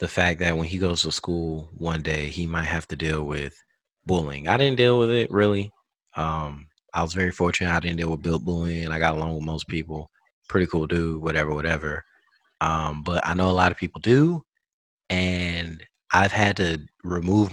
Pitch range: 80-95 Hz